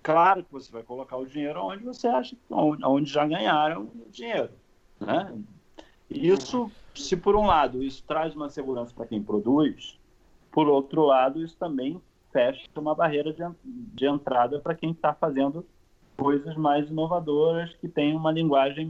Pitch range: 120-155 Hz